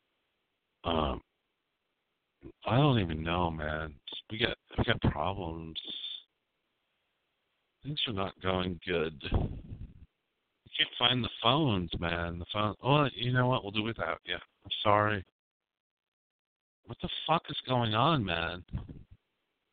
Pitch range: 95-120 Hz